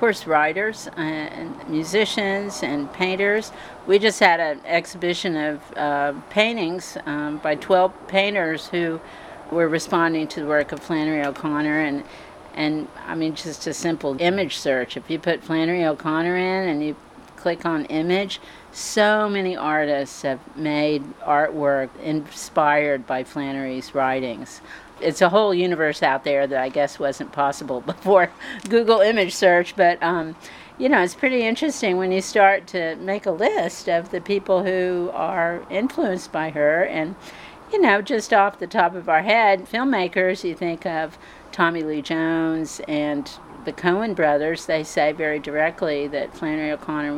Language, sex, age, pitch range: English, female, 50-69, 150-185 Hz